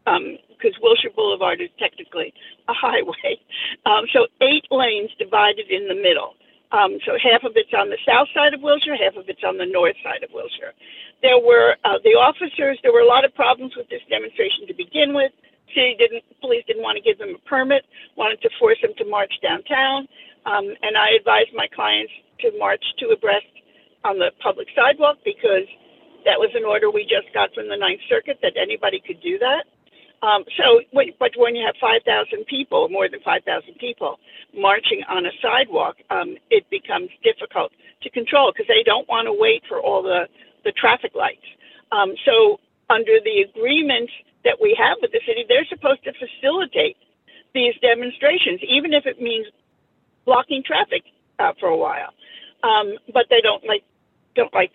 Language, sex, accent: English, female, American